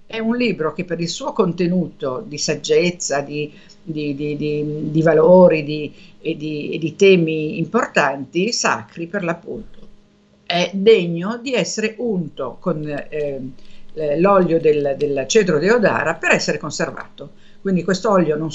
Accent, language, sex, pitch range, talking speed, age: native, Italian, female, 160-205 Hz, 125 wpm, 50-69